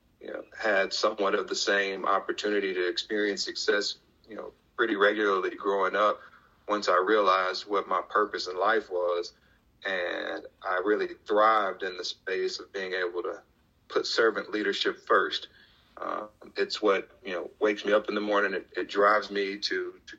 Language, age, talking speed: English, 40-59, 170 wpm